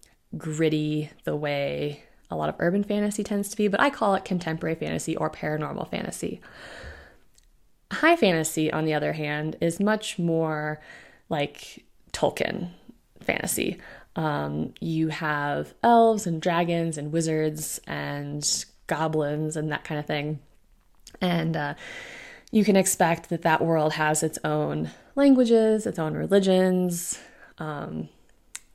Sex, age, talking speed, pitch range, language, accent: female, 20-39, 130 wpm, 155-190 Hz, English, American